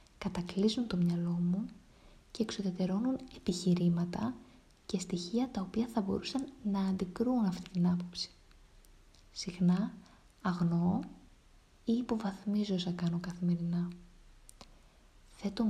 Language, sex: Greek, female